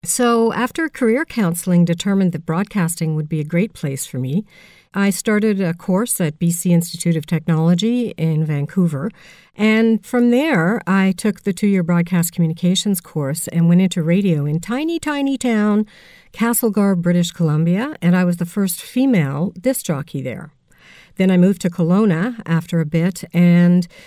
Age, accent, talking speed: 50-69, American, 160 wpm